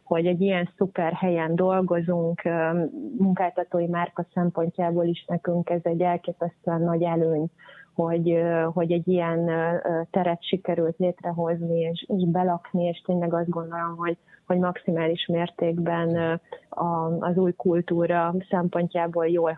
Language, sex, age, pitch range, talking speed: Hungarian, female, 30-49, 170-190 Hz, 110 wpm